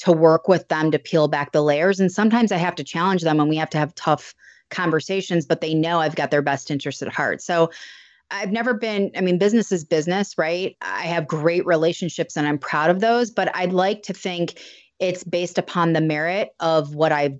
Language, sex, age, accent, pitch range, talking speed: English, female, 30-49, American, 155-180 Hz, 225 wpm